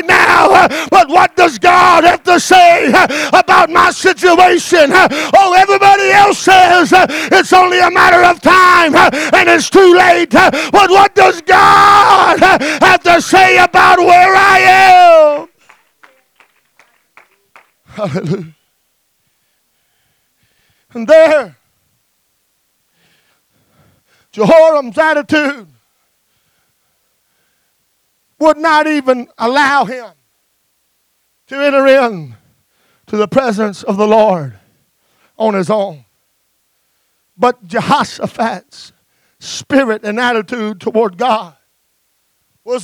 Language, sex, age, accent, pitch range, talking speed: English, male, 40-59, American, 220-360 Hz, 90 wpm